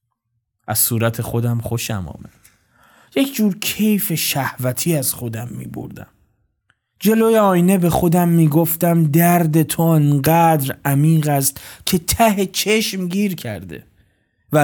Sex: male